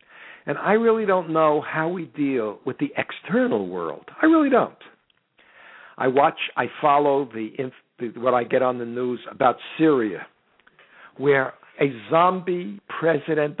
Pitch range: 130-190 Hz